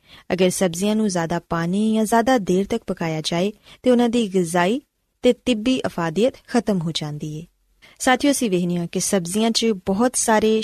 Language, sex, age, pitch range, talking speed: Punjabi, female, 20-39, 175-245 Hz, 165 wpm